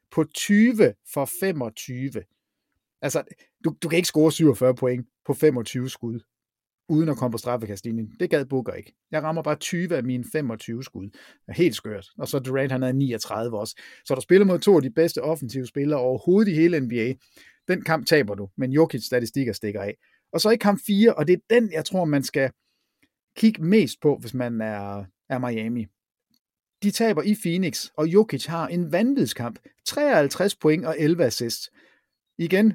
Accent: native